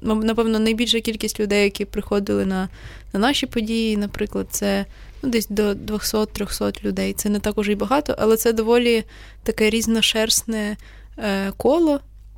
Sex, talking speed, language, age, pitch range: female, 135 wpm, Ukrainian, 20-39, 205-230 Hz